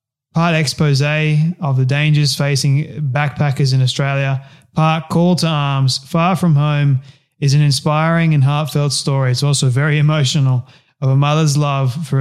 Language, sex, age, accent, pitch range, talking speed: English, male, 20-39, Australian, 130-150 Hz, 150 wpm